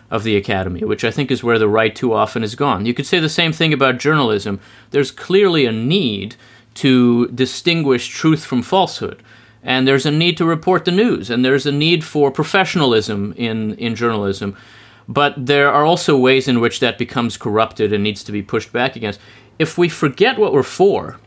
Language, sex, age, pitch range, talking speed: English, male, 30-49, 110-145 Hz, 200 wpm